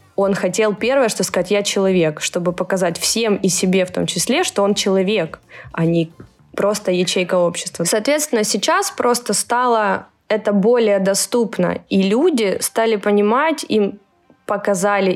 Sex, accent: female, native